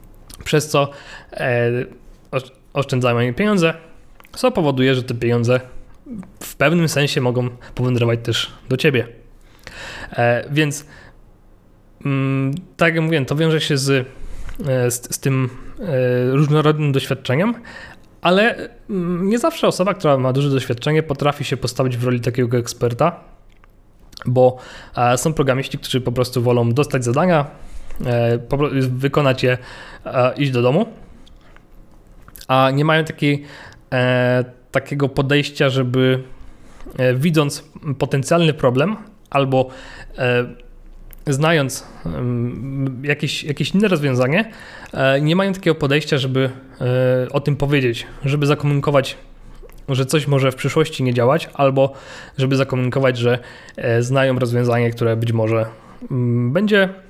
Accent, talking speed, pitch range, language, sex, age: native, 110 wpm, 125-150 Hz, Polish, male, 20-39